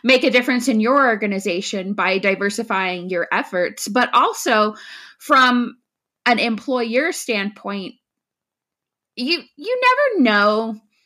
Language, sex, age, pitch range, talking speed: English, female, 20-39, 205-275 Hz, 110 wpm